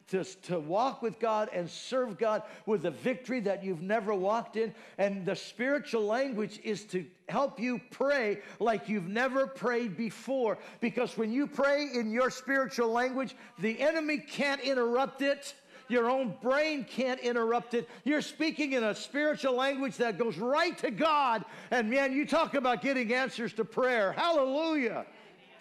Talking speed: 165 wpm